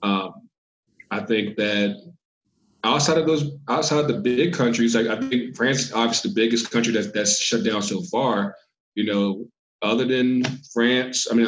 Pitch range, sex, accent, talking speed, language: 105-120 Hz, male, American, 180 wpm, English